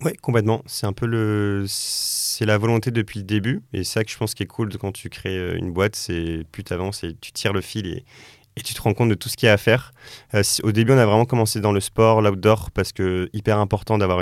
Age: 30-49